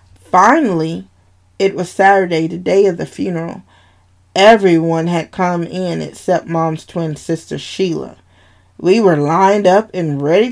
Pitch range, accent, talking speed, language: 160-250 Hz, American, 135 wpm, English